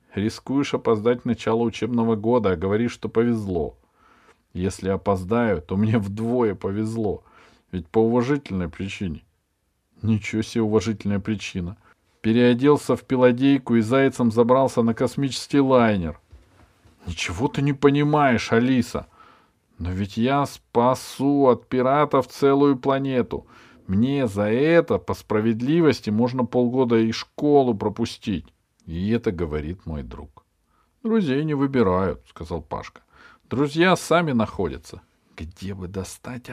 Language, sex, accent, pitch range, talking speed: Russian, male, native, 100-135 Hz, 115 wpm